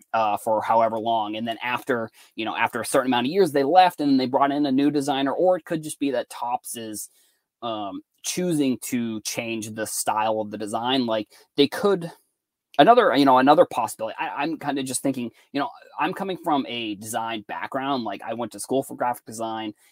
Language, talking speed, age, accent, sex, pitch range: English, 210 wpm, 20-39, American, male, 115-150 Hz